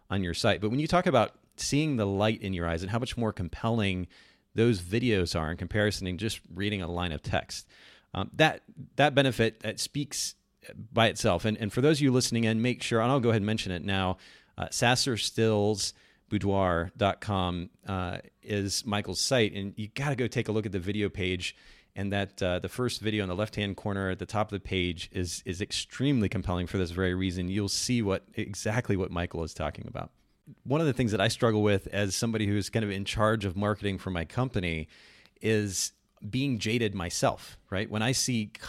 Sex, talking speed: male, 215 wpm